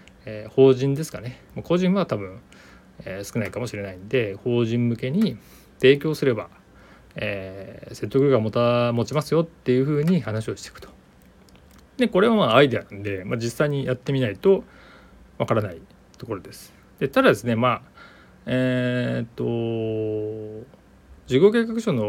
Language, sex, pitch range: Japanese, male, 105-150 Hz